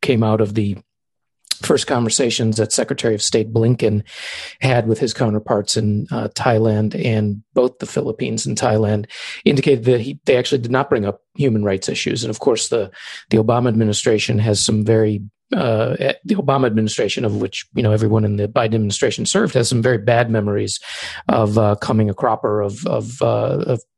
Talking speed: 190 wpm